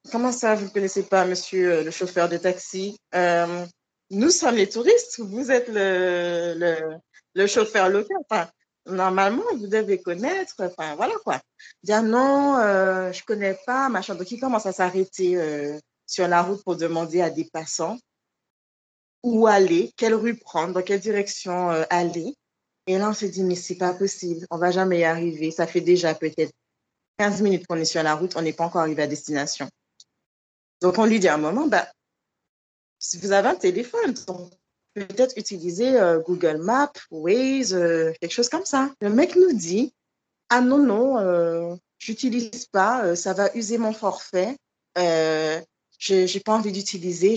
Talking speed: 195 wpm